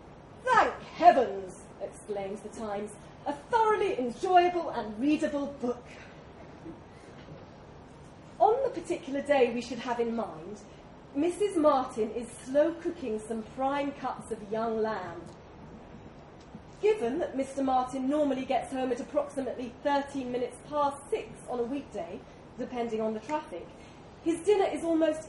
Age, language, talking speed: 30-49, English, 130 wpm